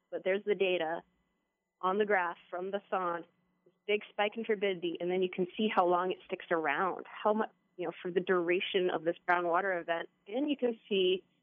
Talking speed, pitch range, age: 215 wpm, 180-215 Hz, 20-39